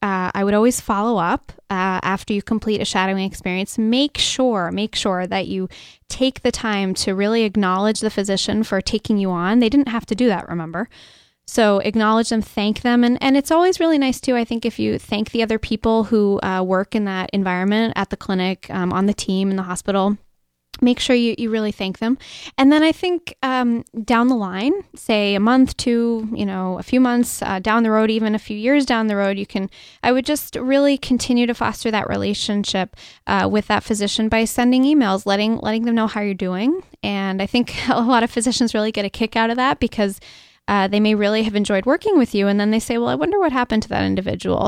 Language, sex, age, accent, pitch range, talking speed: English, female, 10-29, American, 195-240 Hz, 230 wpm